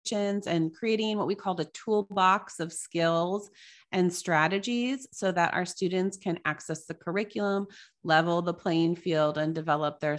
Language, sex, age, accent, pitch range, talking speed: English, female, 30-49, American, 165-200 Hz, 155 wpm